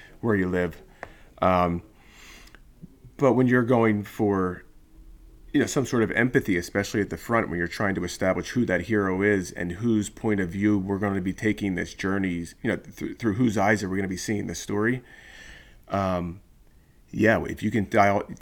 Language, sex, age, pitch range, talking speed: English, male, 30-49, 90-105 Hz, 195 wpm